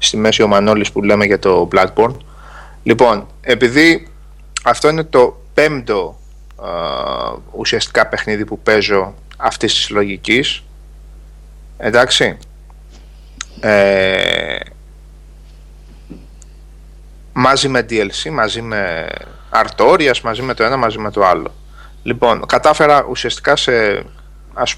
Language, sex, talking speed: Greek, male, 105 wpm